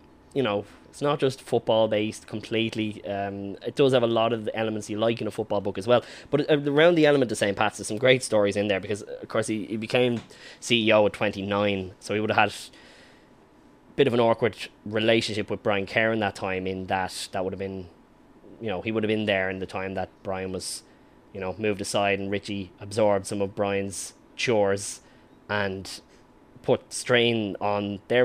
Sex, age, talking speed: male, 20-39, 210 wpm